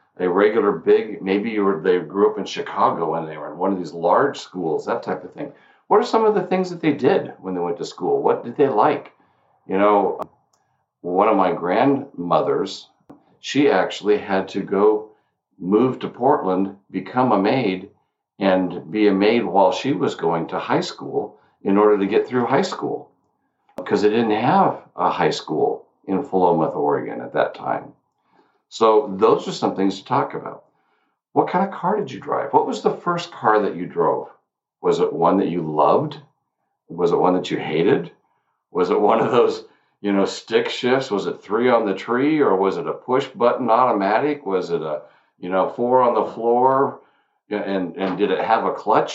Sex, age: male, 50-69